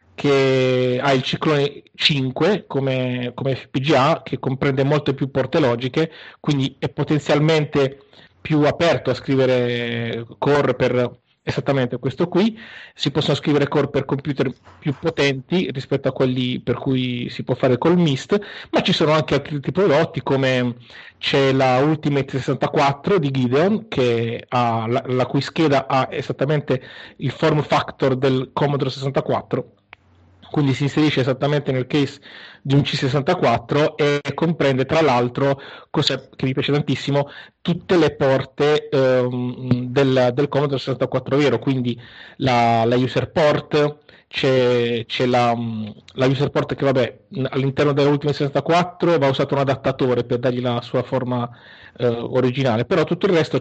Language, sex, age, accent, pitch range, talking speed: Italian, male, 30-49, native, 125-145 Hz, 145 wpm